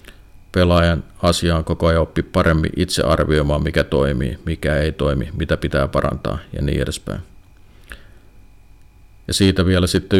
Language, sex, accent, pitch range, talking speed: Finnish, male, native, 80-95 Hz, 135 wpm